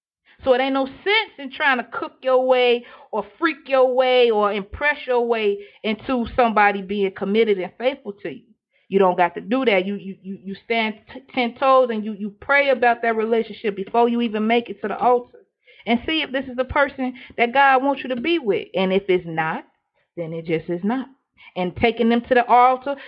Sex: female